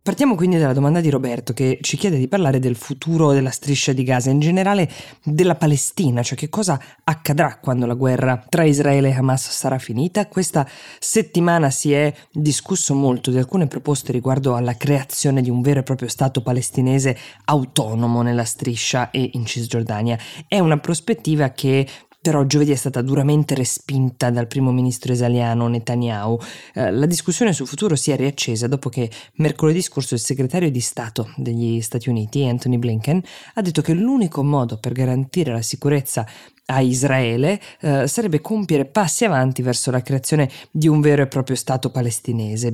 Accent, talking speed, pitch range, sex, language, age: native, 170 wpm, 125-150 Hz, female, Italian, 20-39